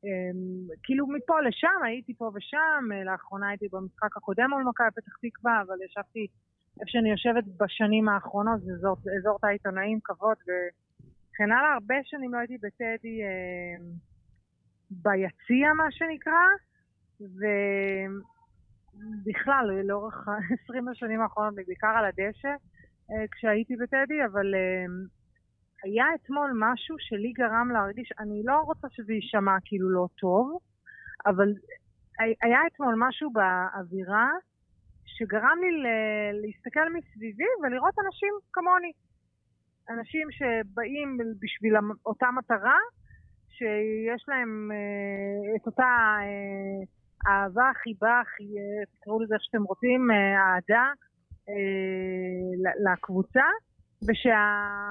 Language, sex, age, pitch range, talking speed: Hebrew, female, 30-49, 200-250 Hz, 100 wpm